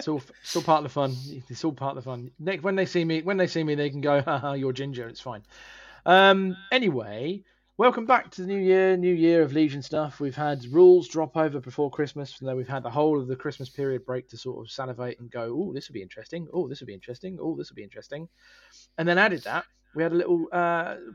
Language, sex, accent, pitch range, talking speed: English, male, British, 130-170 Hz, 260 wpm